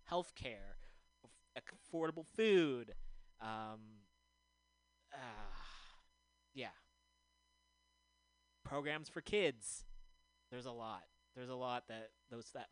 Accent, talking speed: American, 95 wpm